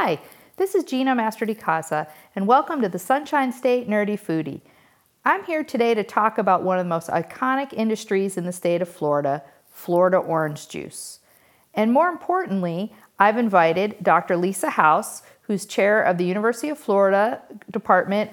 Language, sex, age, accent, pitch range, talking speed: English, female, 50-69, American, 175-230 Hz, 165 wpm